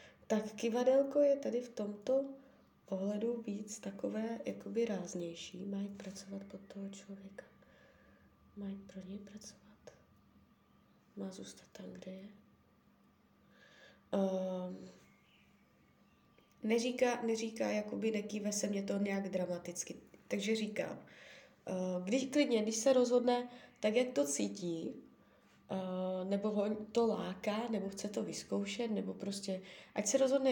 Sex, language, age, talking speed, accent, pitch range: female, Czech, 20-39, 120 wpm, native, 195-235 Hz